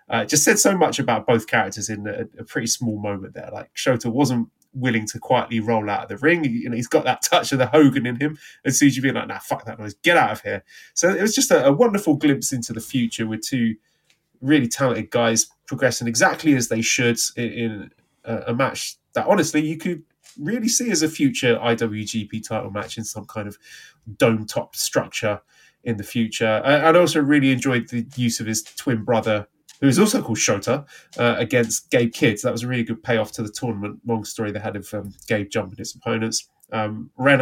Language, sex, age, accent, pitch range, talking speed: English, male, 20-39, British, 110-140 Hz, 225 wpm